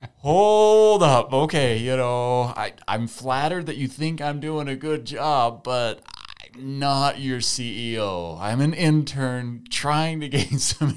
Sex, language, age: male, English, 30-49